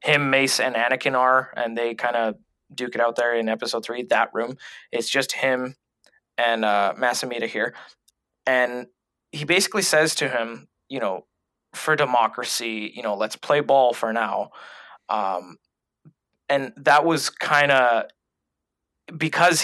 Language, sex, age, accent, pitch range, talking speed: English, male, 20-39, American, 115-145 Hz, 145 wpm